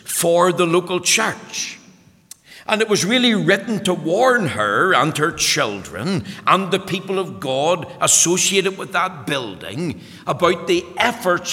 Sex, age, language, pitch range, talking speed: male, 60-79, English, 155-195 Hz, 140 wpm